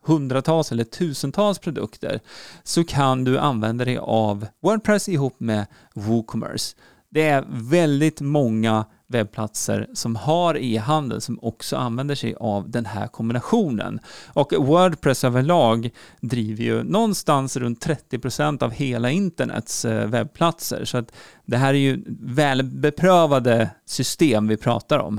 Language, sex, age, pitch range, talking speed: Swedish, male, 40-59, 120-160 Hz, 125 wpm